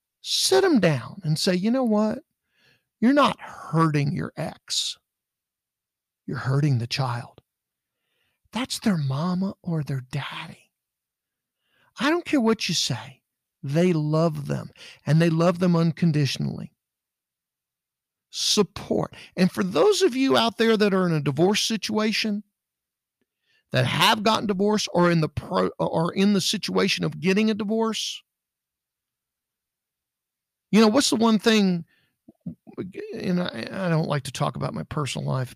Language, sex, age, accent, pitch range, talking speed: English, male, 50-69, American, 150-220 Hz, 140 wpm